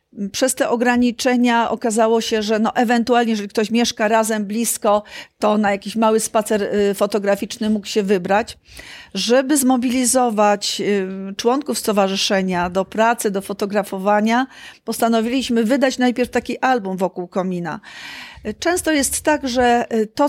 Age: 40-59